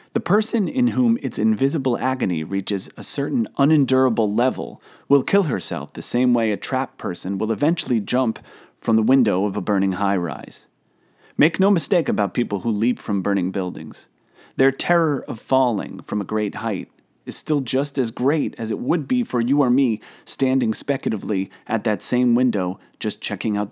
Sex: male